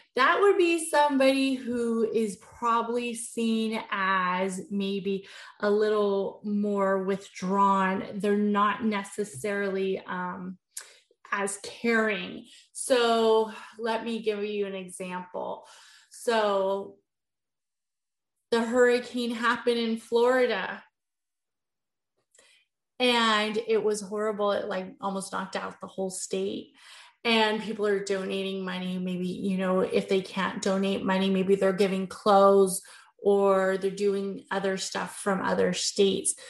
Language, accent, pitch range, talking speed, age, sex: English, American, 190-220 Hz, 115 wpm, 20-39, female